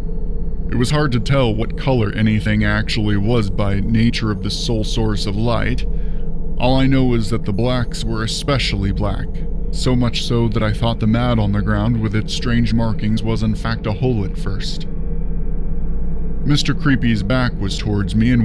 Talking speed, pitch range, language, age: 185 wpm, 105-130 Hz, English, 20-39